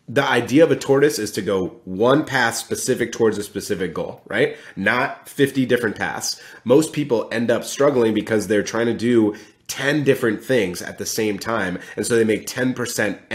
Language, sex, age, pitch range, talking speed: English, male, 30-49, 100-130 Hz, 190 wpm